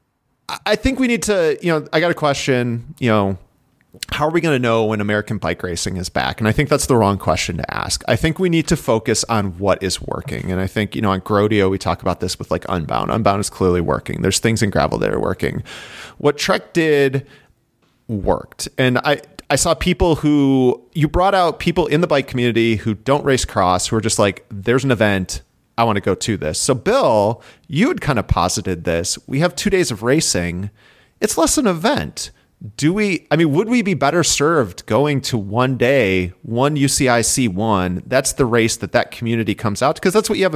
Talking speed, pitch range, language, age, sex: 225 wpm, 100-145 Hz, English, 30-49, male